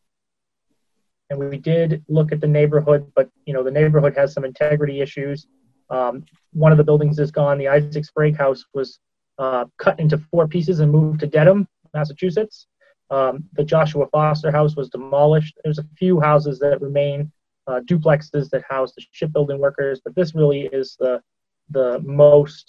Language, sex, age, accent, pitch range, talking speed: English, male, 30-49, American, 135-155 Hz, 170 wpm